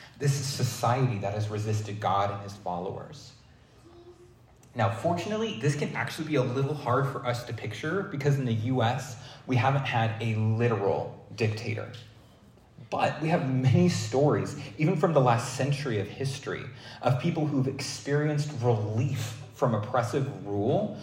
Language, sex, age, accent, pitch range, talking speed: English, male, 30-49, American, 110-140 Hz, 150 wpm